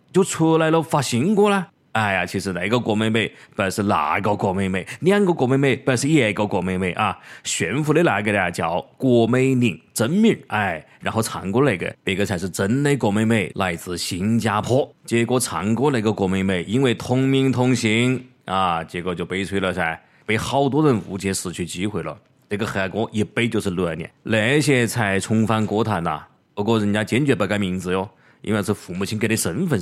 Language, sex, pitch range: Chinese, male, 100-135 Hz